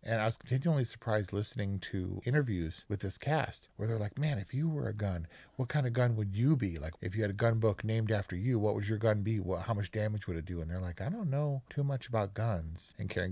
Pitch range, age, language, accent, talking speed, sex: 90-115 Hz, 40-59, English, American, 275 wpm, male